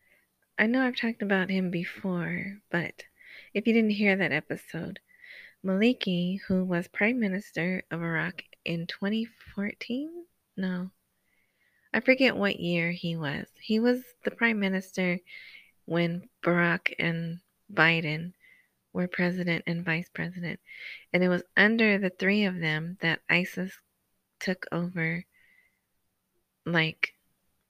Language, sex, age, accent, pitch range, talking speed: English, female, 20-39, American, 170-215 Hz, 125 wpm